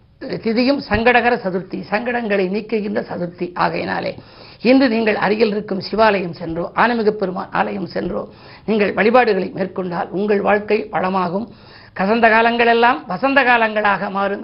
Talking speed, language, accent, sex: 110 wpm, Tamil, native, female